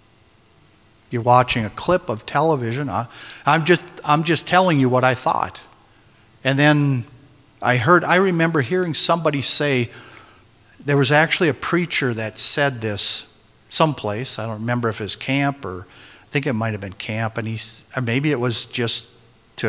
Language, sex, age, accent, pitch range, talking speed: English, male, 50-69, American, 115-145 Hz, 170 wpm